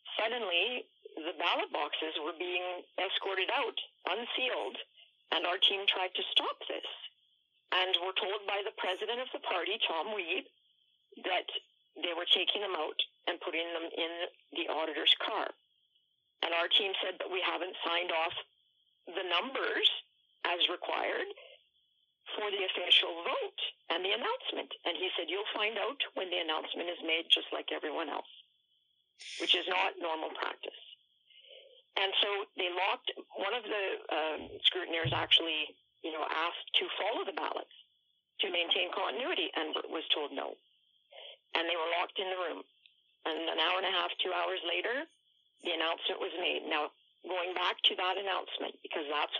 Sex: female